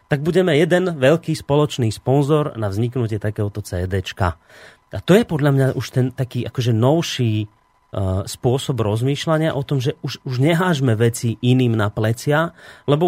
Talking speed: 155 wpm